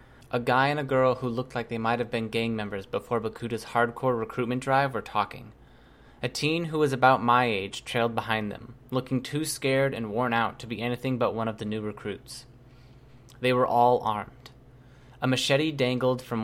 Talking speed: 195 wpm